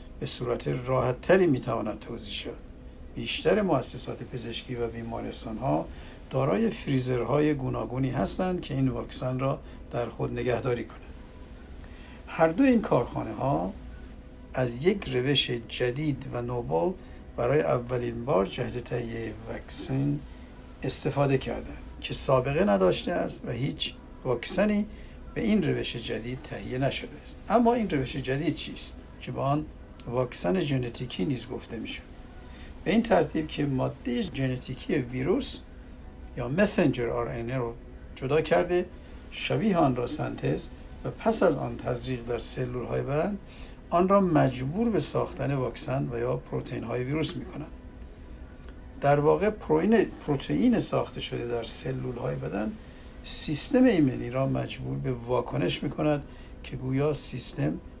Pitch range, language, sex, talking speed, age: 110-145 Hz, Persian, male, 135 wpm, 60-79